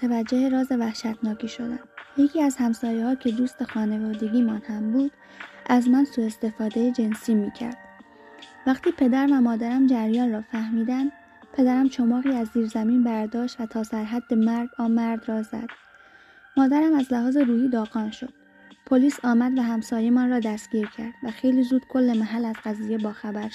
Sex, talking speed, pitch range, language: female, 160 wpm, 230-265 Hz, Persian